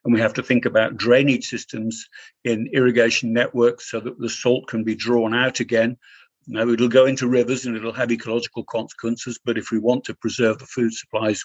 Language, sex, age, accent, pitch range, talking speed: English, male, 50-69, British, 115-135 Hz, 205 wpm